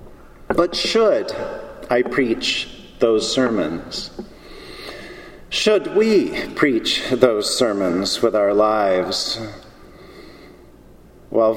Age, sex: 50-69, male